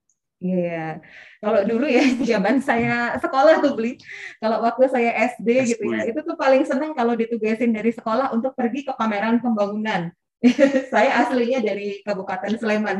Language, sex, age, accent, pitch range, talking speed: Indonesian, female, 20-39, native, 195-250 Hz, 150 wpm